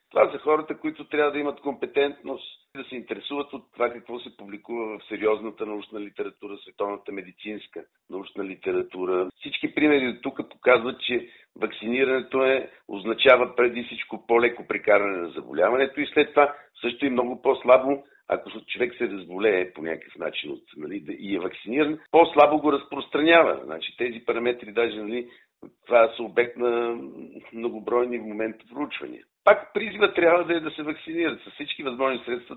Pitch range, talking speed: 110-150 Hz, 165 wpm